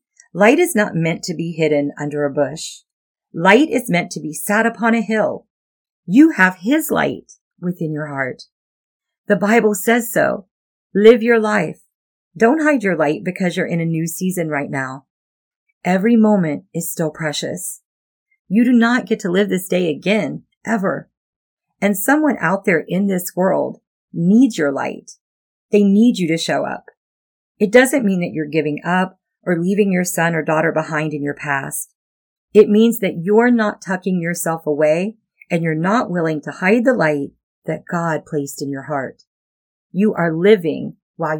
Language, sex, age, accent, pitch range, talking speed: English, female, 40-59, American, 155-210 Hz, 170 wpm